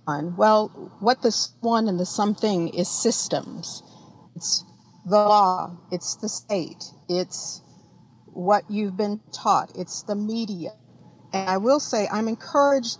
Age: 50-69